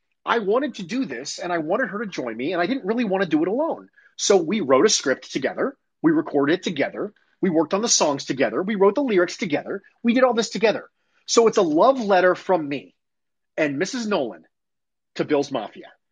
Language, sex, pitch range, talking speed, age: English, male, 180-255 Hz, 225 wpm, 30-49